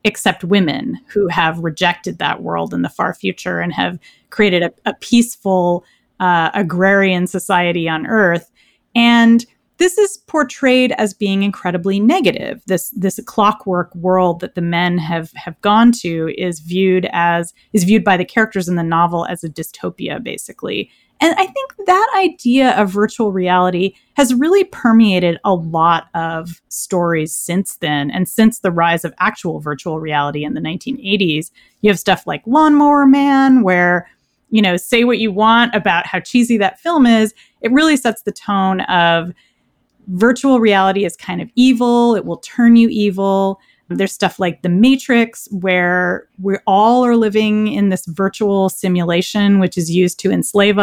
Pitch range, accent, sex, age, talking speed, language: 175-230 Hz, American, female, 30-49, 165 wpm, English